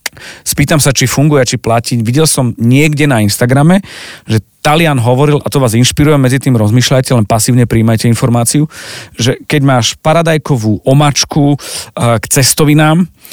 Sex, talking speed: male, 145 wpm